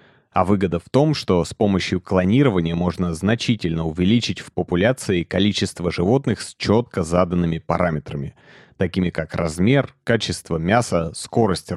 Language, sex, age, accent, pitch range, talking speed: Russian, male, 30-49, native, 85-110 Hz, 125 wpm